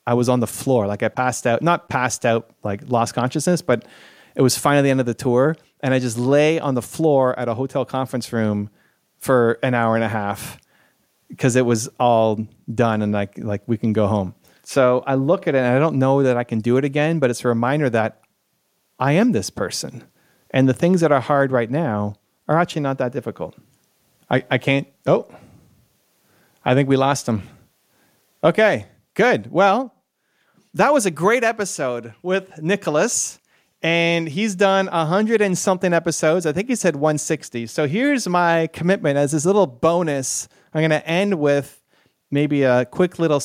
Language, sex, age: English, male, 30-49